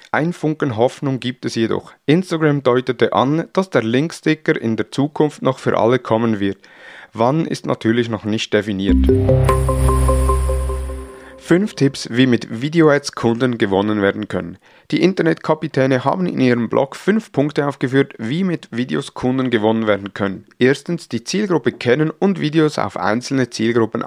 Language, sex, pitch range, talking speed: German, male, 110-150 Hz, 150 wpm